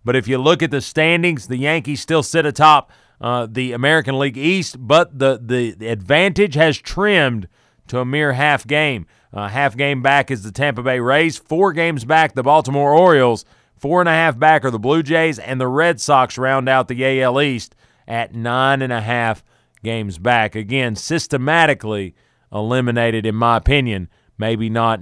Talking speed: 180 wpm